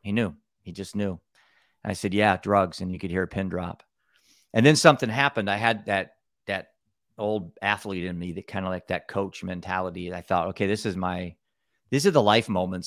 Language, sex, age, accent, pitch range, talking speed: English, male, 40-59, American, 95-110 Hz, 220 wpm